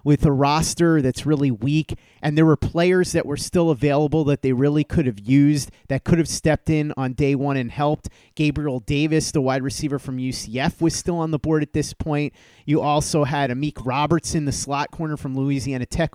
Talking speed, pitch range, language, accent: 215 wpm, 135-165 Hz, English, American